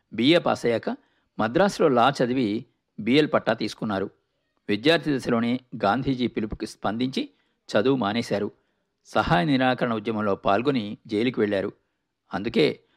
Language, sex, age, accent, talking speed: Telugu, male, 50-69, native, 95 wpm